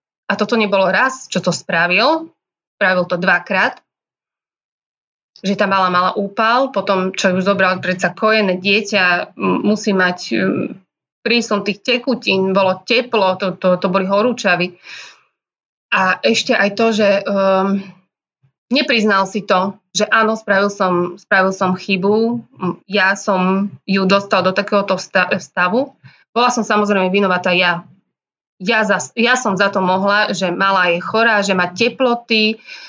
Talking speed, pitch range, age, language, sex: 140 wpm, 185-215 Hz, 20-39, Slovak, female